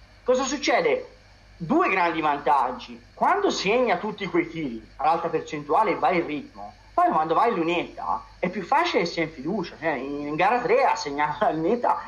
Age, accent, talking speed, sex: 30-49, native, 175 wpm, male